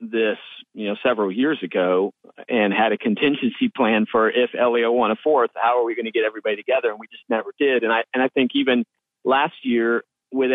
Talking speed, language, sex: 220 wpm, English, male